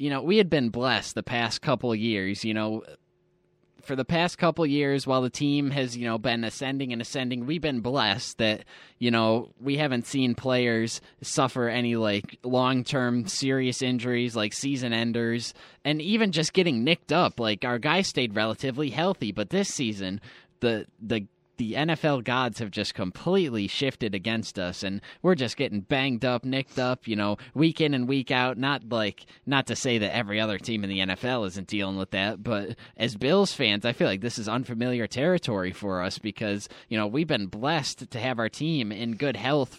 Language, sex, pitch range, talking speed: English, male, 110-135 Hz, 200 wpm